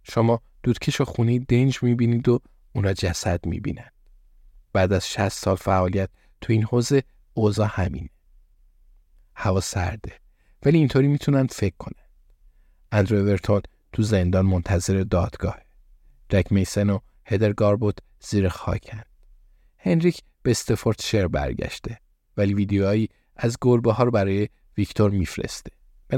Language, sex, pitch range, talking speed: Persian, male, 90-115 Hz, 120 wpm